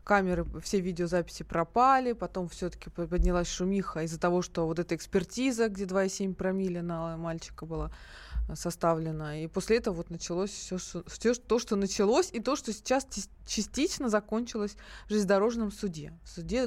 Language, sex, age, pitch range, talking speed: Russian, female, 20-39, 170-210 Hz, 150 wpm